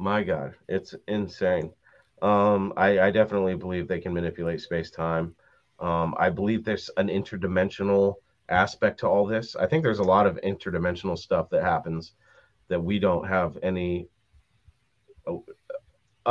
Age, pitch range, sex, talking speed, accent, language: 30-49, 90-110 Hz, male, 140 wpm, American, English